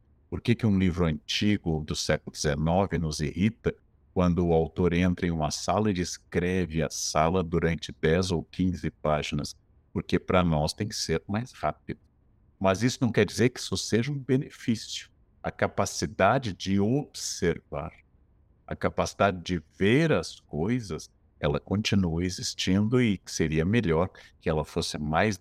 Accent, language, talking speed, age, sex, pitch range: Brazilian, Portuguese, 155 wpm, 60-79, male, 80-105 Hz